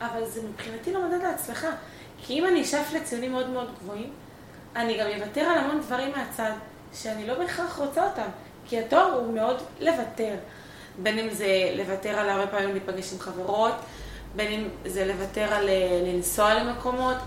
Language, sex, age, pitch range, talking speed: Hebrew, female, 20-39, 200-255 Hz, 165 wpm